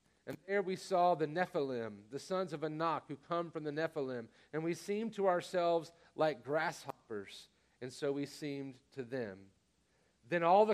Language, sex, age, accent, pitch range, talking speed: English, male, 40-59, American, 155-195 Hz, 175 wpm